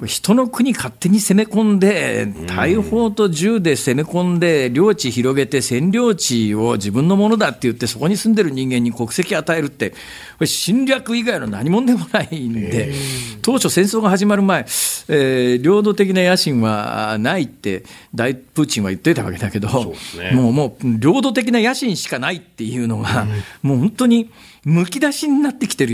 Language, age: Japanese, 50-69